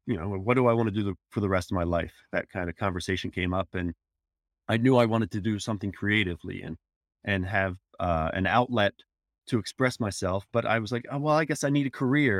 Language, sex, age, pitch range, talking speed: English, male, 30-49, 85-110 Hz, 245 wpm